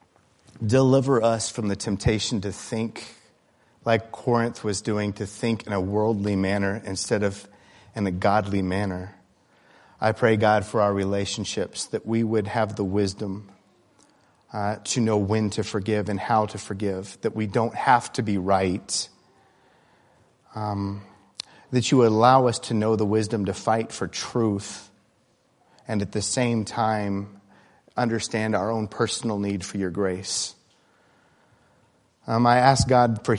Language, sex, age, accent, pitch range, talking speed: English, male, 40-59, American, 100-115 Hz, 150 wpm